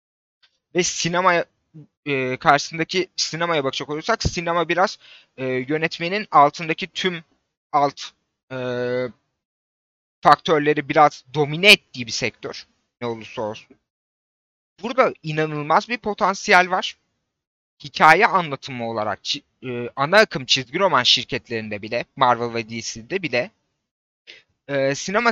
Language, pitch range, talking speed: Turkish, 130-185 Hz, 105 wpm